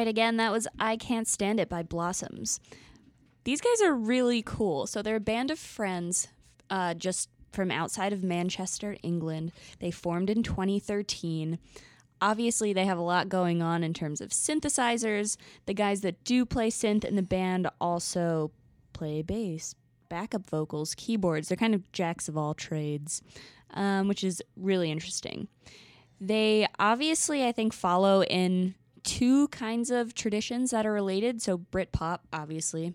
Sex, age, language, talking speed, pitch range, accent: female, 20-39, English, 155 wpm, 170-220 Hz, American